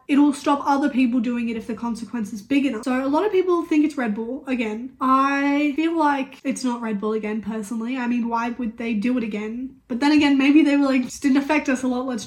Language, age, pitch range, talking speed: English, 10-29, 235-285 Hz, 260 wpm